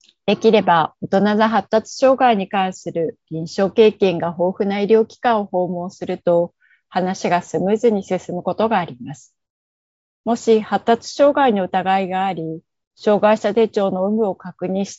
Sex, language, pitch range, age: female, Japanese, 175-220 Hz, 30-49